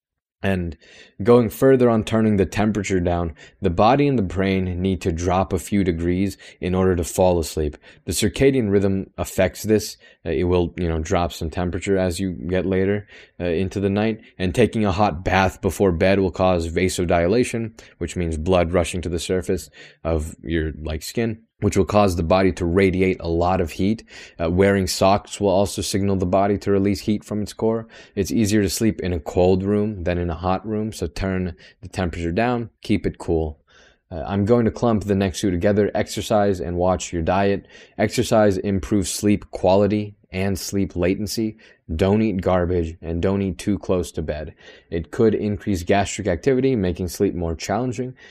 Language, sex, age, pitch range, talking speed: English, male, 20-39, 85-105 Hz, 190 wpm